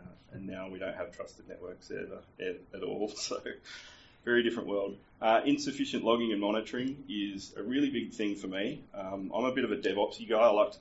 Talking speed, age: 200 wpm, 20-39